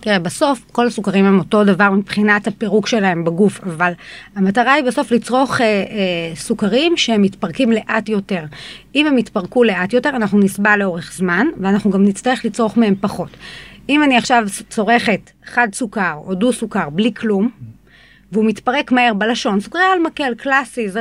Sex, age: female, 30-49